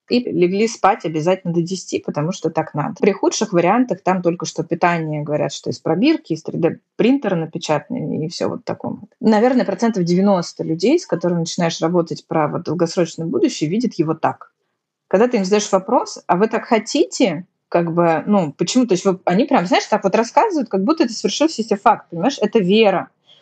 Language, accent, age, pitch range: Russian, native, 20-39, 175-235 Hz